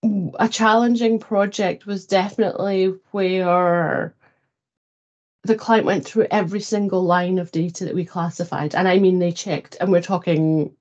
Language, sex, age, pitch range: English, female, 30-49, 165-195 Hz